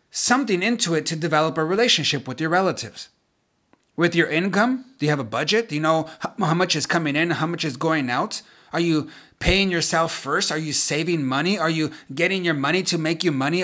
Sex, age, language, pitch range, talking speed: male, 30-49, English, 145-180 Hz, 215 wpm